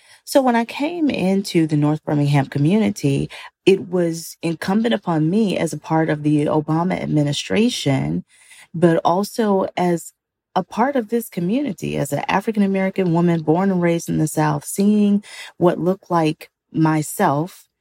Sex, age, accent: female, 30-49, American